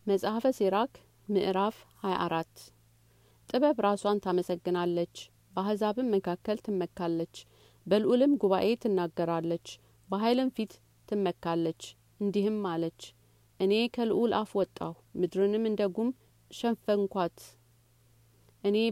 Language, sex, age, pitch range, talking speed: Amharic, female, 40-59, 175-210 Hz, 80 wpm